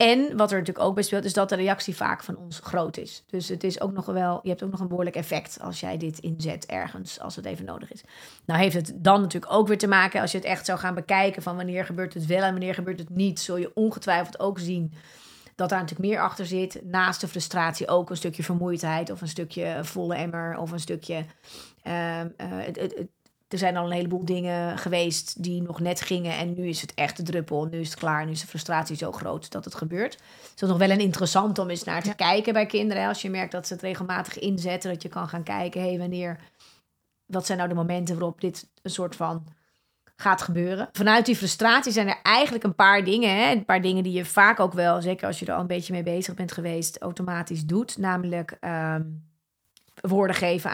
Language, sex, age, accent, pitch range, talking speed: Dutch, female, 30-49, Dutch, 170-190 Hz, 235 wpm